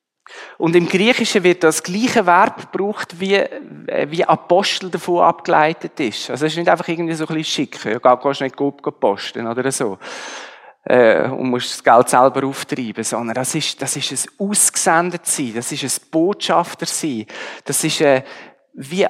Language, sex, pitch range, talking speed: German, male, 140-180 Hz, 160 wpm